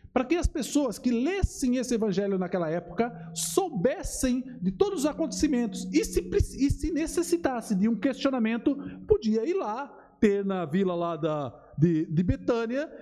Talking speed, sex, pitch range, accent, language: 150 wpm, male, 190-270 Hz, Brazilian, Portuguese